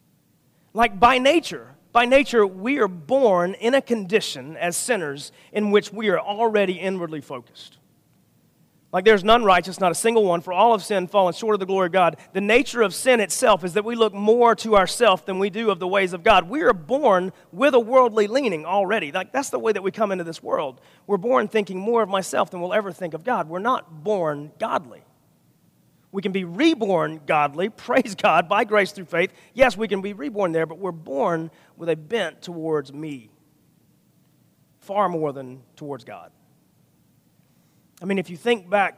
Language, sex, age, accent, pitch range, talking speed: English, male, 40-59, American, 160-215 Hz, 200 wpm